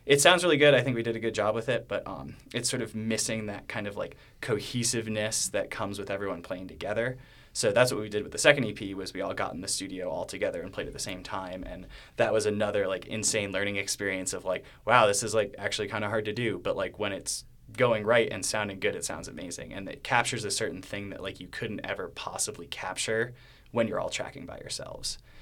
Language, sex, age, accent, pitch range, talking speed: English, male, 20-39, American, 105-125 Hz, 250 wpm